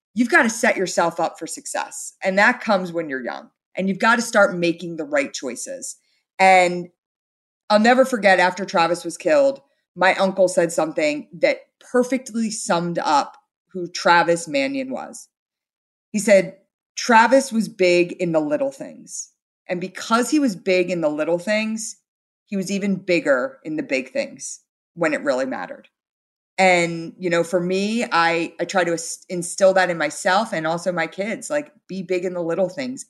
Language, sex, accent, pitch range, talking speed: English, female, American, 175-245 Hz, 175 wpm